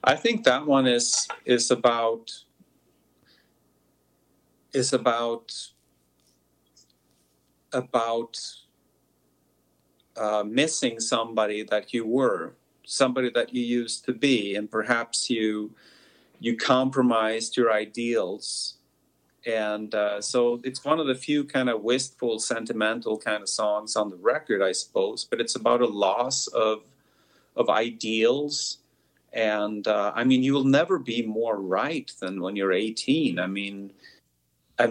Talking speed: 125 wpm